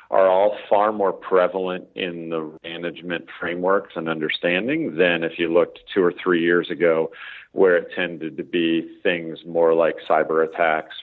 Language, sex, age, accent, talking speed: English, male, 40-59, American, 165 wpm